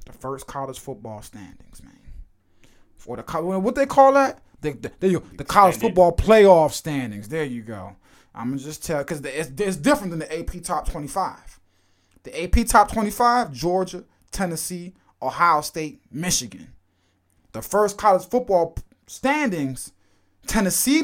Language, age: English, 20-39